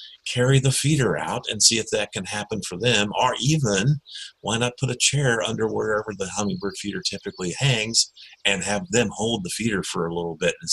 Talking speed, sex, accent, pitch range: 205 wpm, male, American, 85-110 Hz